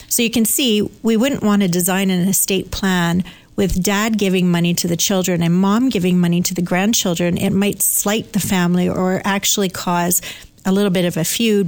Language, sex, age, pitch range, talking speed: English, female, 40-59, 185-225 Hz, 205 wpm